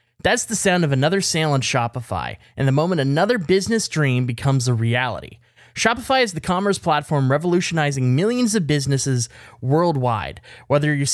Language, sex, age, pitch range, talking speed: English, male, 20-39, 130-190 Hz, 155 wpm